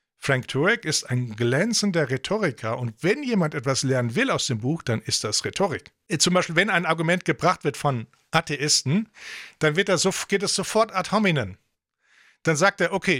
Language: English